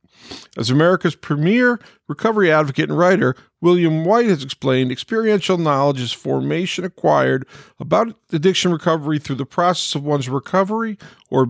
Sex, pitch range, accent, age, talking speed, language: male, 130-175 Hz, American, 50-69, 135 wpm, English